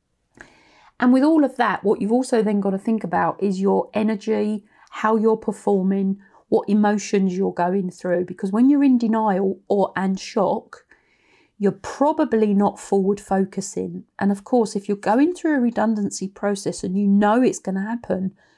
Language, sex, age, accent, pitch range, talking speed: English, female, 40-59, British, 195-220 Hz, 175 wpm